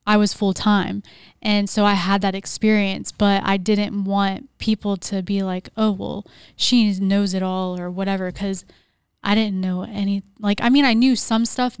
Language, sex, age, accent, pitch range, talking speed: English, female, 10-29, American, 195-210 Hz, 190 wpm